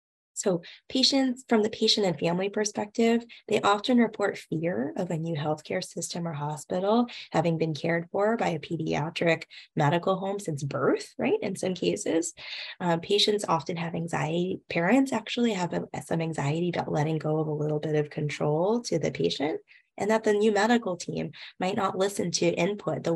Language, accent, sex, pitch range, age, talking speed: English, American, female, 160-210 Hz, 10-29, 175 wpm